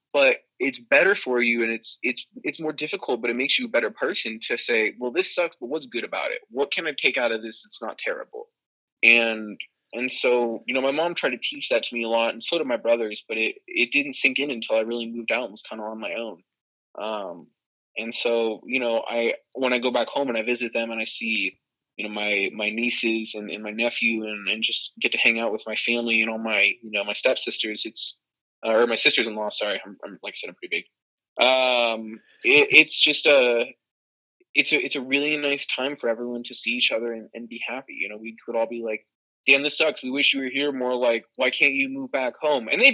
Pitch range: 115-145 Hz